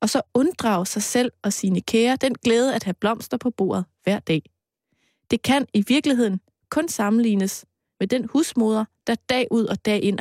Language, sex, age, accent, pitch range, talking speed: Danish, female, 20-39, native, 195-255 Hz, 190 wpm